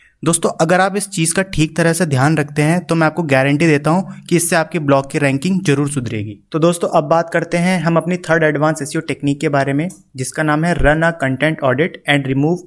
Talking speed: 235 wpm